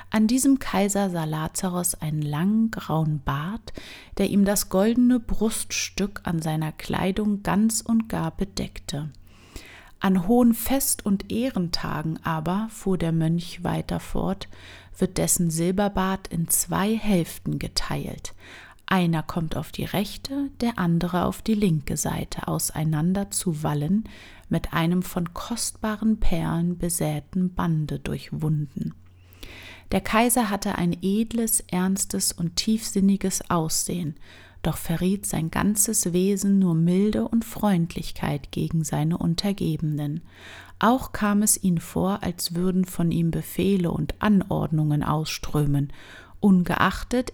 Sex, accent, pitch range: female, German, 160-205 Hz